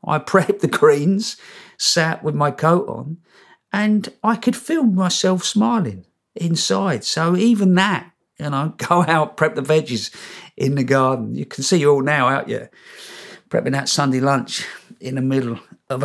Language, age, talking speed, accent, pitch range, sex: English, 50-69, 170 wpm, British, 125-170 Hz, male